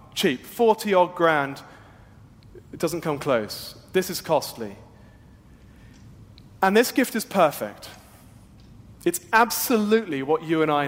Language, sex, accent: English, male, British